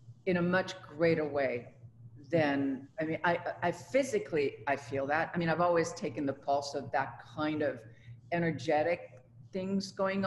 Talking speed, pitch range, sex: 165 wpm, 135-175 Hz, female